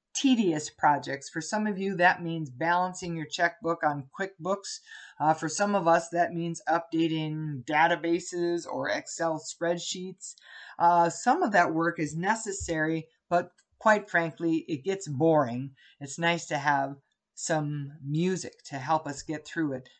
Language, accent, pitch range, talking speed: English, American, 160-215 Hz, 150 wpm